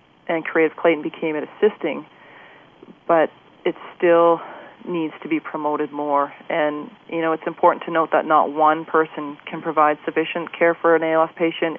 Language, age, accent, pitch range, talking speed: English, 40-59, American, 155-170 Hz, 170 wpm